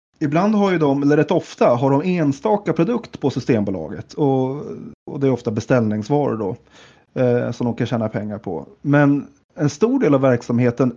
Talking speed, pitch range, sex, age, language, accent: 180 wpm, 115-150 Hz, male, 30-49, Swedish, native